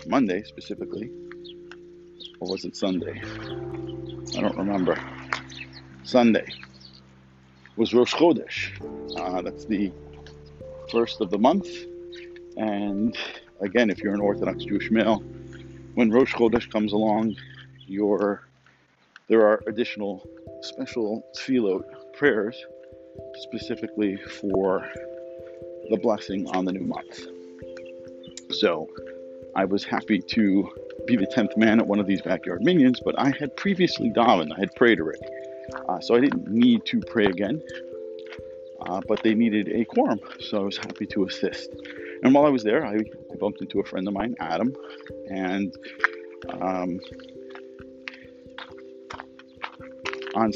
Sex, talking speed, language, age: male, 130 wpm, English, 50-69